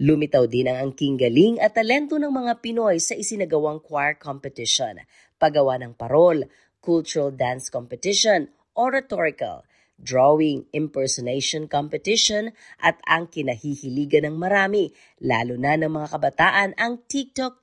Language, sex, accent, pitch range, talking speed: Filipino, female, native, 140-200 Hz, 125 wpm